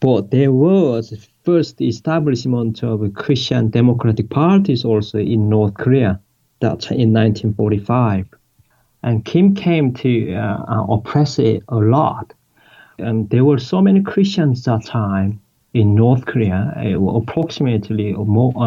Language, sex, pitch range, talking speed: English, male, 110-140 Hz, 130 wpm